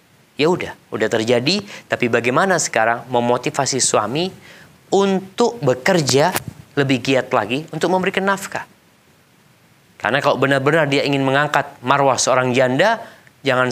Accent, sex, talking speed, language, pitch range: native, male, 120 wpm, Indonesian, 110-145 Hz